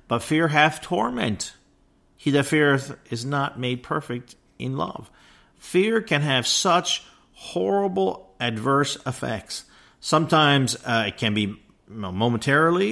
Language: English